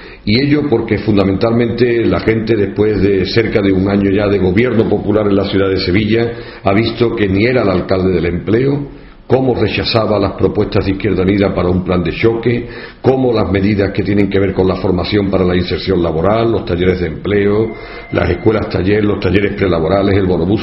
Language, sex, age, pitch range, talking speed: Spanish, male, 50-69, 95-110 Hz, 200 wpm